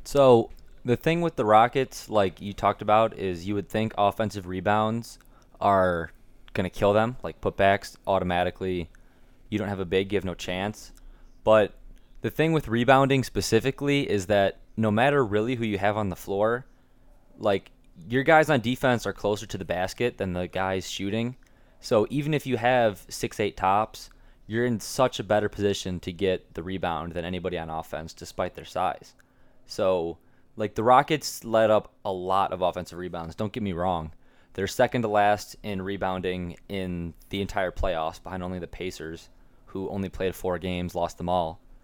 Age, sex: 20-39, male